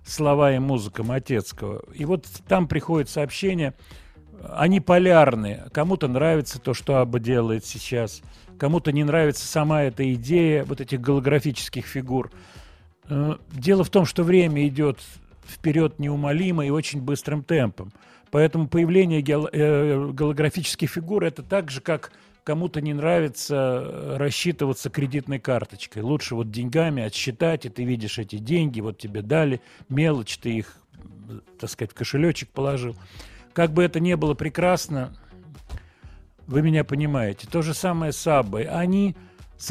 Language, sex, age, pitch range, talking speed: Russian, male, 40-59, 120-160 Hz, 135 wpm